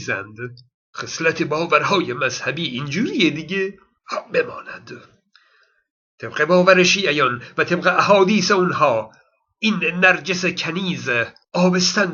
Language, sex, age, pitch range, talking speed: Persian, male, 50-69, 165-220 Hz, 90 wpm